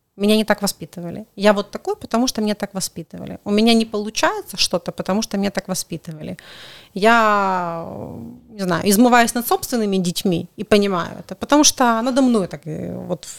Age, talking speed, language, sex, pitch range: 30-49, 170 wpm, Russian, female, 175-225 Hz